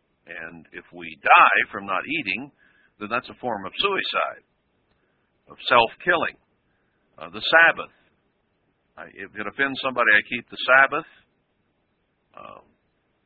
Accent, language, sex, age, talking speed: American, English, male, 60-79, 120 wpm